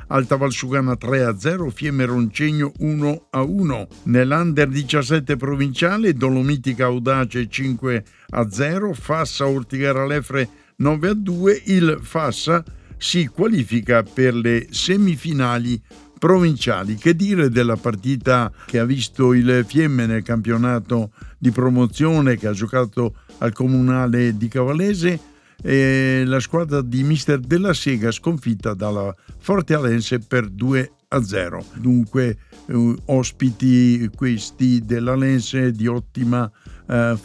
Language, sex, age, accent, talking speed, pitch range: Italian, male, 60-79, native, 120 wpm, 120-145 Hz